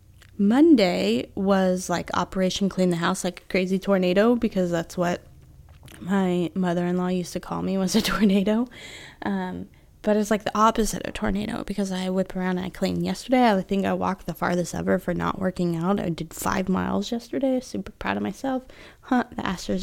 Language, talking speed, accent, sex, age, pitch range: English, 190 wpm, American, female, 20-39, 175-235 Hz